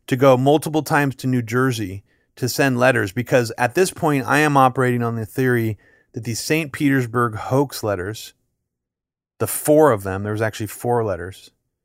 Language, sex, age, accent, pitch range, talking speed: English, male, 30-49, American, 110-140 Hz, 175 wpm